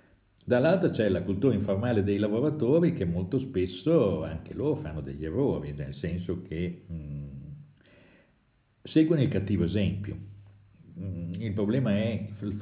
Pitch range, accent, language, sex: 90-110 Hz, native, Italian, male